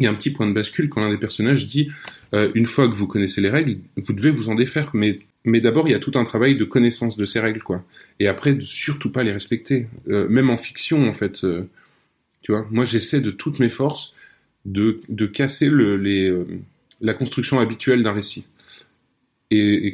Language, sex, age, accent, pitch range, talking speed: French, male, 20-39, French, 105-125 Hz, 230 wpm